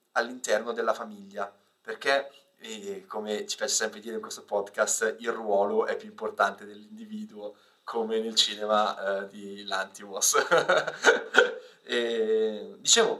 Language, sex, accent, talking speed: Italian, male, native, 115 wpm